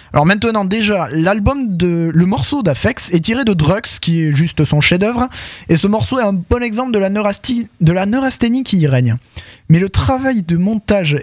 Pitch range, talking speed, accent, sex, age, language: 150-205 Hz, 205 wpm, French, male, 20-39, French